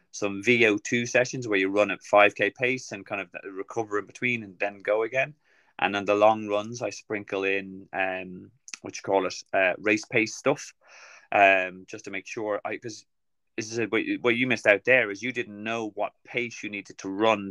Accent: British